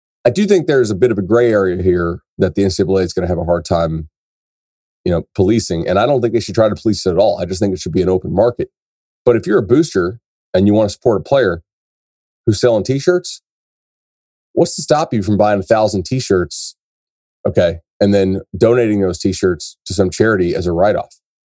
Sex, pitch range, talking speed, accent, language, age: male, 90-110 Hz, 225 wpm, American, English, 30-49